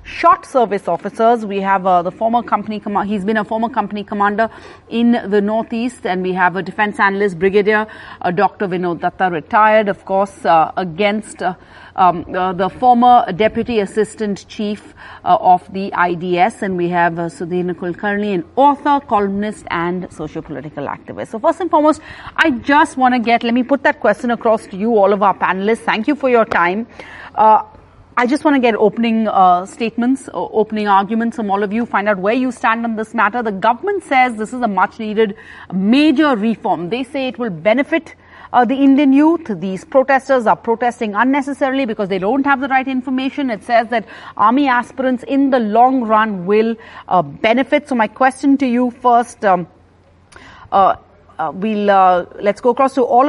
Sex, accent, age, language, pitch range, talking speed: female, Indian, 40-59, English, 195-255 Hz, 190 wpm